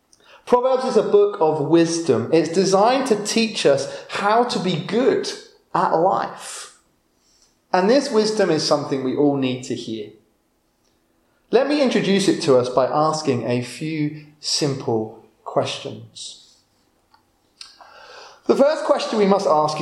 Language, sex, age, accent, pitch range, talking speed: English, male, 30-49, British, 155-225 Hz, 135 wpm